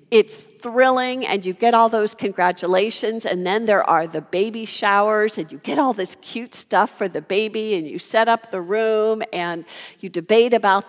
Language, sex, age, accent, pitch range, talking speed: English, female, 50-69, American, 210-285 Hz, 195 wpm